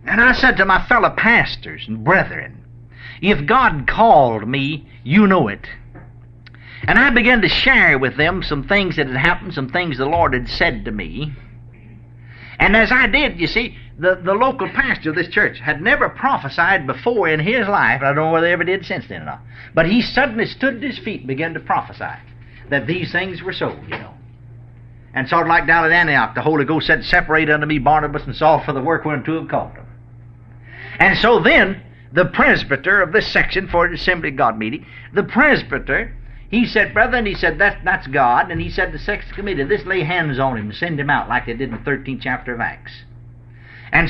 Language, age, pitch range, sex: English, 60-79, 120-180 Hz, male